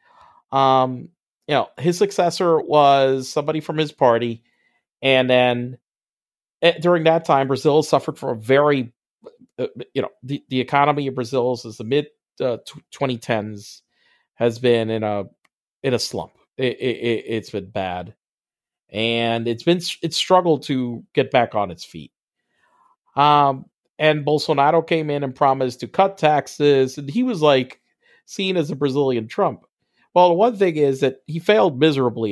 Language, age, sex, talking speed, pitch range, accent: English, 40-59, male, 160 wpm, 125-170 Hz, American